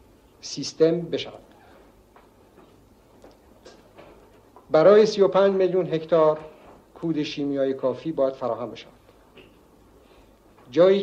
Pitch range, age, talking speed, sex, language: 135-165 Hz, 60-79, 70 wpm, male, Persian